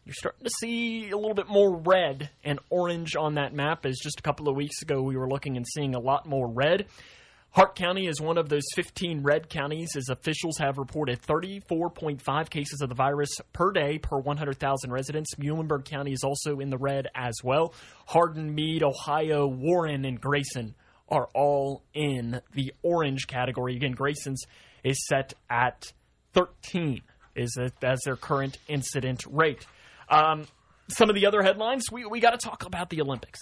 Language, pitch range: English, 135-180 Hz